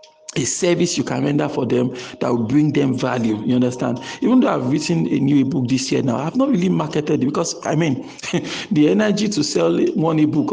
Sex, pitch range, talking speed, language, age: male, 130-170 Hz, 215 wpm, English, 50-69